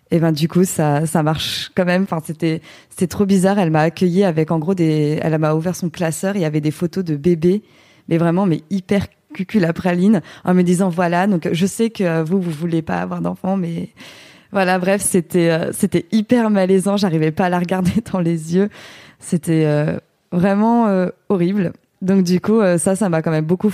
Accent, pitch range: French, 160-190 Hz